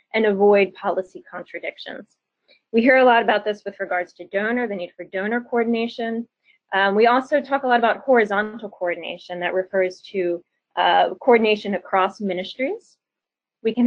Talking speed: 160 wpm